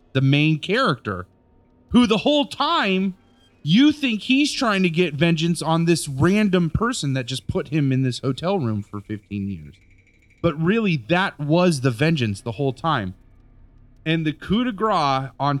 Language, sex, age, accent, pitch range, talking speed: English, male, 30-49, American, 115-170 Hz, 170 wpm